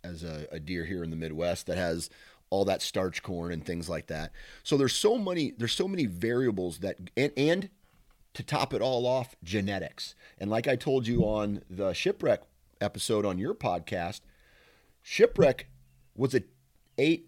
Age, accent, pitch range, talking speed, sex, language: 40-59, American, 90-120 Hz, 175 wpm, male, English